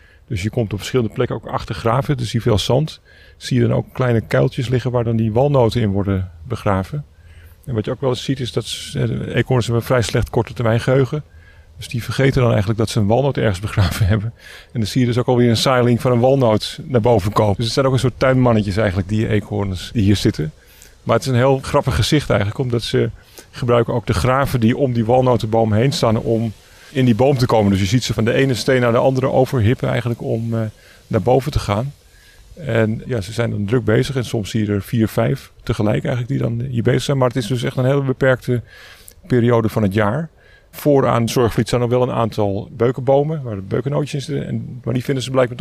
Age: 40-59